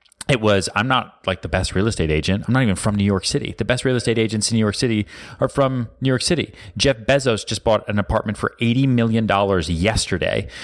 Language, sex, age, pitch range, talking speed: English, male, 30-49, 95-125 Hz, 230 wpm